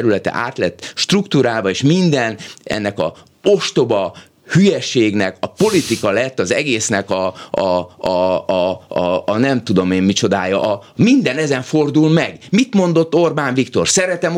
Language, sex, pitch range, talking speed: Hungarian, male, 100-145 Hz, 140 wpm